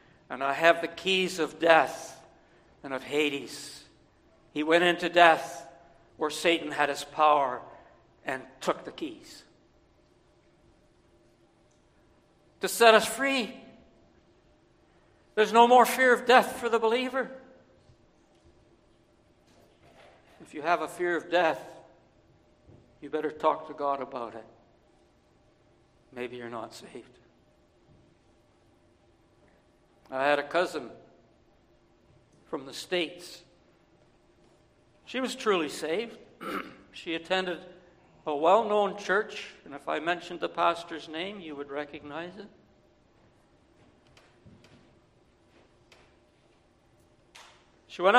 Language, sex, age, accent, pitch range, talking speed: English, male, 60-79, American, 145-200 Hz, 105 wpm